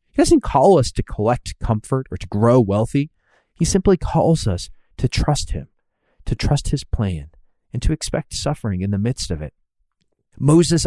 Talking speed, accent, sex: 175 wpm, American, male